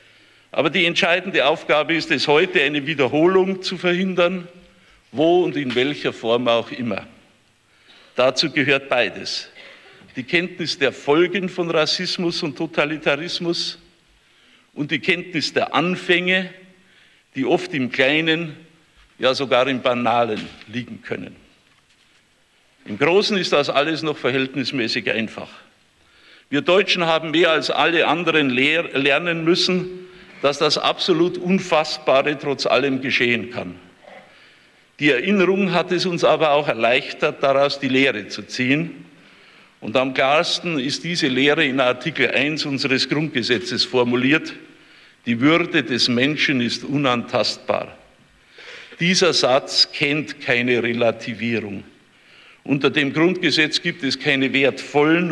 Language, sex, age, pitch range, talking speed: German, male, 50-69, 130-170 Hz, 120 wpm